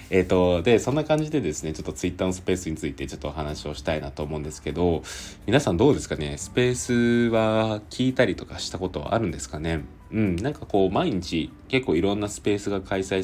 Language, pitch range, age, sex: Japanese, 80-105 Hz, 20-39, male